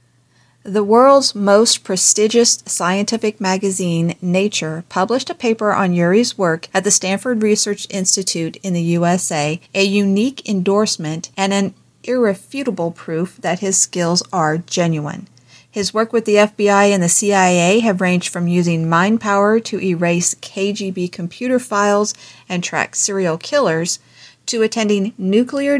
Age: 40-59